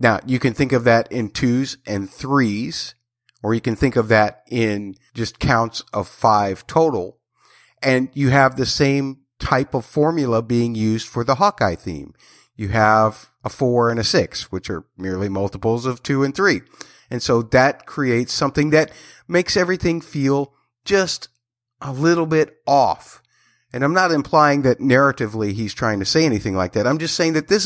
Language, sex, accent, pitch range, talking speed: English, male, American, 110-135 Hz, 180 wpm